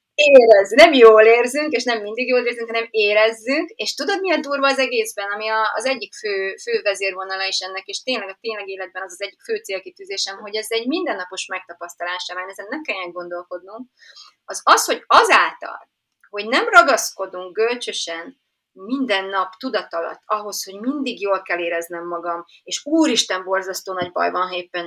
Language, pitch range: Hungarian, 185-265 Hz